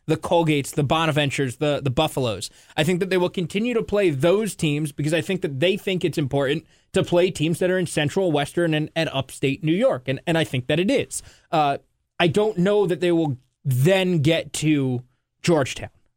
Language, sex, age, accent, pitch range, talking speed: English, male, 20-39, American, 145-185 Hz, 210 wpm